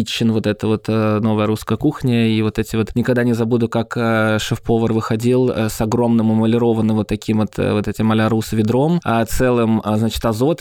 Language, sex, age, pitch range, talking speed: Russian, male, 20-39, 110-135 Hz, 175 wpm